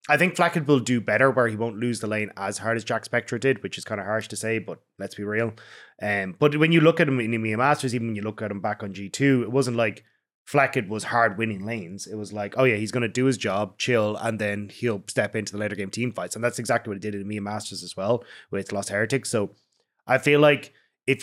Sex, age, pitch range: male, 20-39, 110-130 Hz